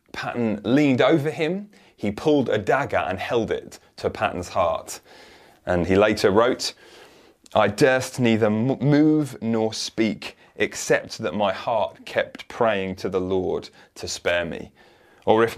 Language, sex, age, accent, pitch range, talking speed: English, male, 30-49, British, 95-120 Hz, 145 wpm